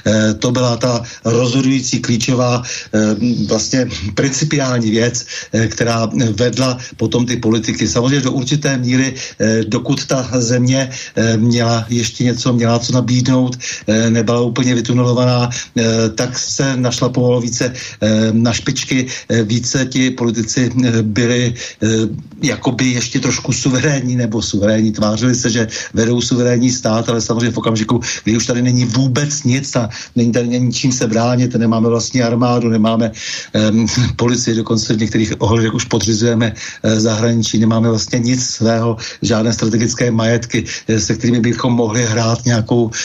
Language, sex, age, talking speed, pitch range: Slovak, male, 60-79, 130 wpm, 115-130 Hz